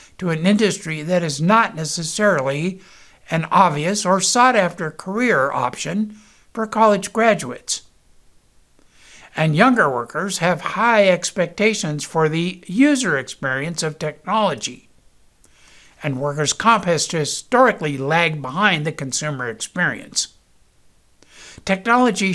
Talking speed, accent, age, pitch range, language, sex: 105 wpm, American, 60-79, 155-210 Hz, English, male